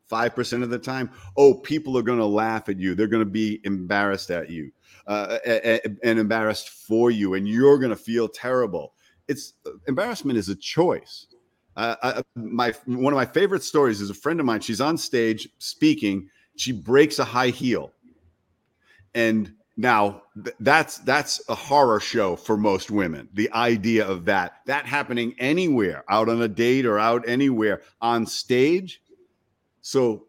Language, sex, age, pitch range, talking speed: English, male, 50-69, 110-140 Hz, 165 wpm